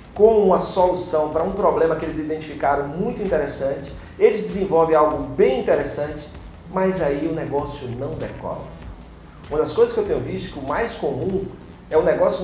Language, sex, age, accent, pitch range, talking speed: Portuguese, male, 40-59, Brazilian, 150-210 Hz, 175 wpm